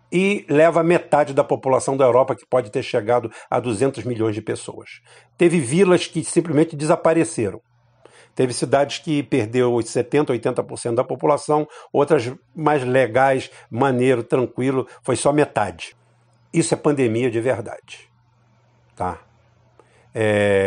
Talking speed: 125 wpm